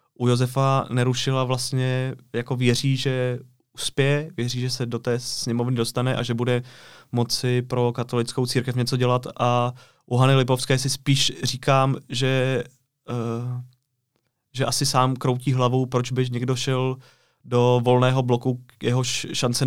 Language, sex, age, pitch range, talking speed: Czech, male, 20-39, 115-130 Hz, 145 wpm